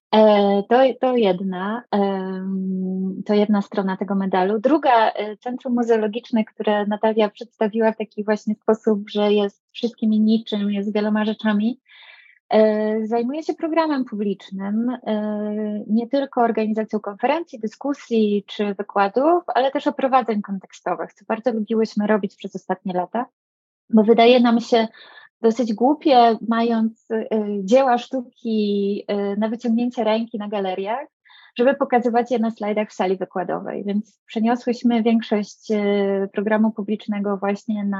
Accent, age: Polish, 20-39